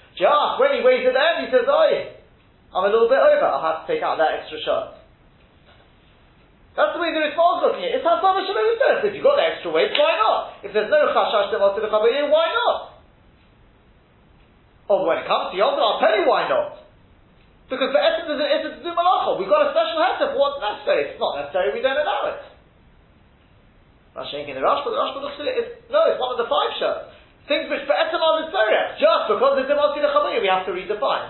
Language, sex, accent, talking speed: English, male, British, 225 wpm